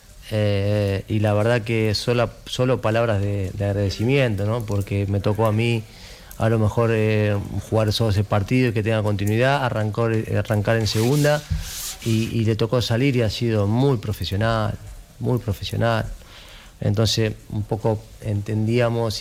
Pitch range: 100-115 Hz